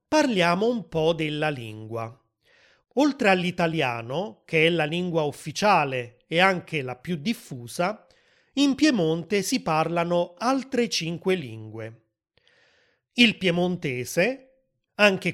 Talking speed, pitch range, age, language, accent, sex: 105 wpm, 150-210 Hz, 30-49, Italian, native, male